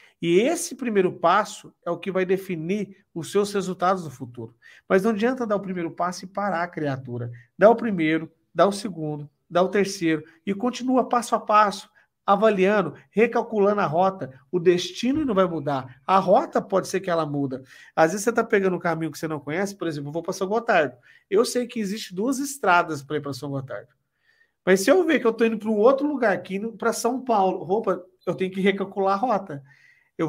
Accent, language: Brazilian, Portuguese